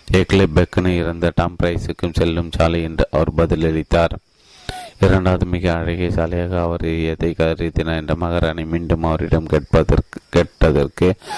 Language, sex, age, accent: Tamil, male, 30-49, native